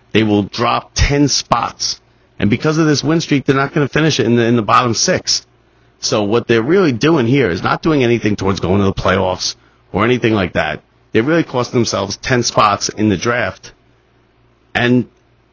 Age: 30-49